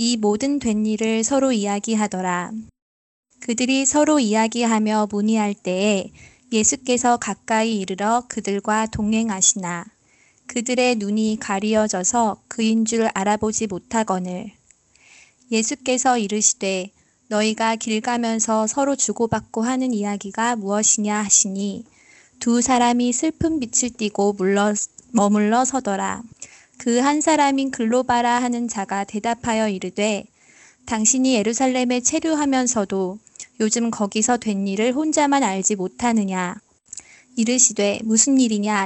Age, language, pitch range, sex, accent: 20-39, Korean, 205-245 Hz, female, native